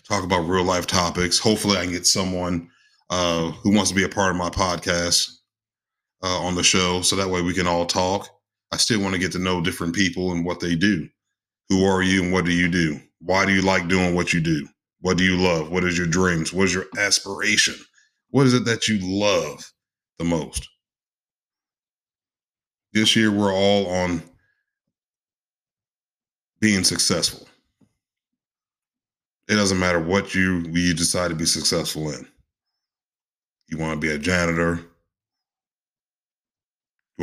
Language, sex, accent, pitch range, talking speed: English, male, American, 85-100 Hz, 170 wpm